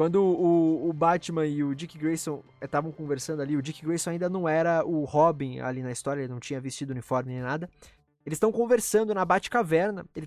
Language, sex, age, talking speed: Portuguese, male, 20-39, 205 wpm